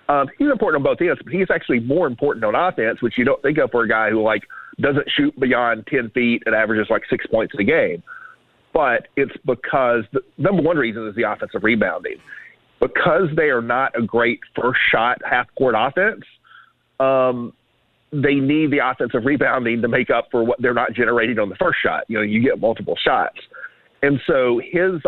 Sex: male